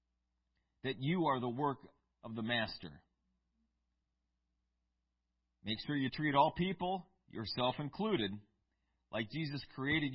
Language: English